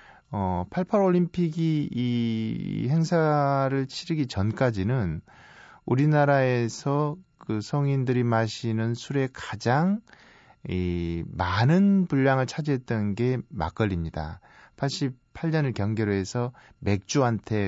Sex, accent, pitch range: male, native, 100-140 Hz